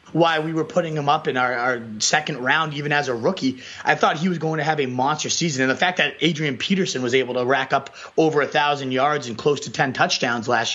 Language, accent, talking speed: English, American, 255 wpm